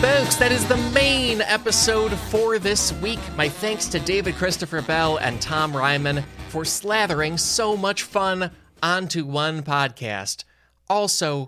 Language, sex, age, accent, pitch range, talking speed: English, male, 20-39, American, 135-195 Hz, 140 wpm